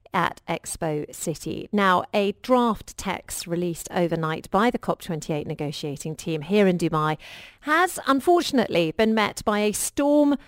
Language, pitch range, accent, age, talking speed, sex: English, 175-245 Hz, British, 40-59, 135 wpm, female